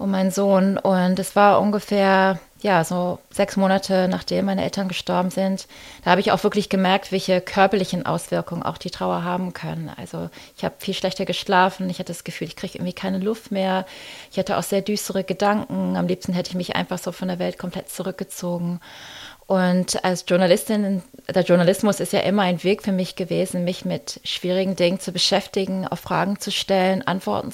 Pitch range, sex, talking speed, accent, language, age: 175-200 Hz, female, 195 wpm, German, German, 30-49